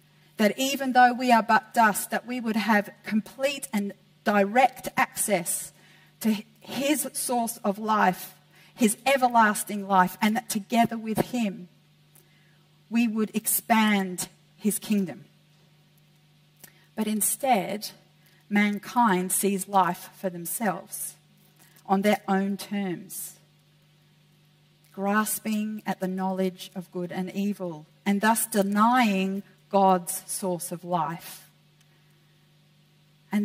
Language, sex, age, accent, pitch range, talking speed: English, female, 40-59, Australian, 155-210 Hz, 110 wpm